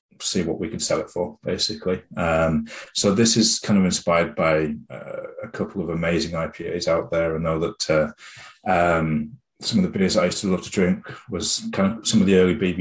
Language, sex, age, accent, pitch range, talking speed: English, male, 30-49, British, 80-95 Hz, 215 wpm